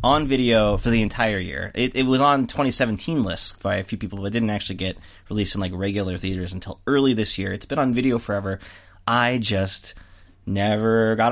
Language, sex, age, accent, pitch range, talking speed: English, male, 30-49, American, 95-115 Hz, 205 wpm